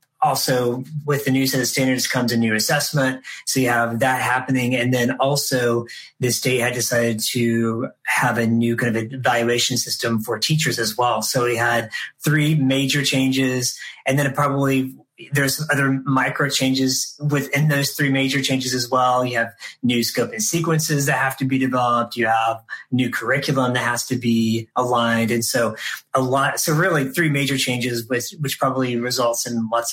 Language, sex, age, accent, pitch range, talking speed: English, male, 30-49, American, 120-135 Hz, 180 wpm